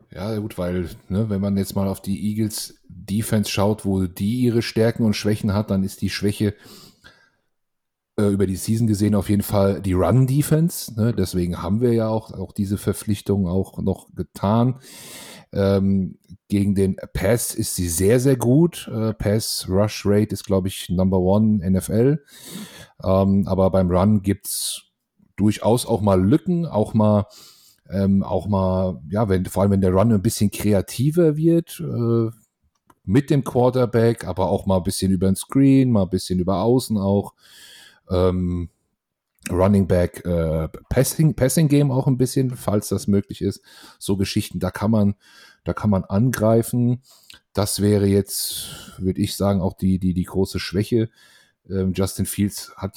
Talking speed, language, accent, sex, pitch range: 160 wpm, German, German, male, 95-115 Hz